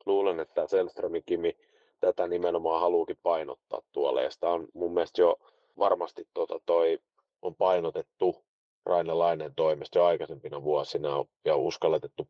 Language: Finnish